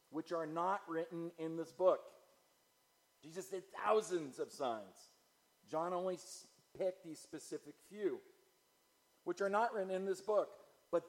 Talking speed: 140 wpm